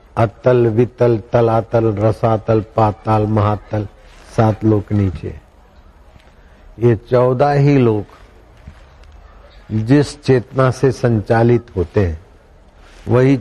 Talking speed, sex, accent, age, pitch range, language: 100 wpm, male, native, 60-79, 90-120 Hz, Hindi